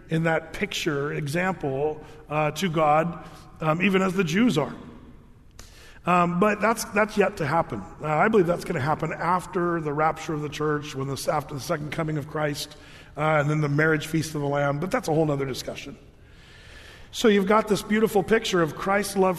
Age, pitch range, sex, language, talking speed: 40-59, 150-190 Hz, male, English, 200 wpm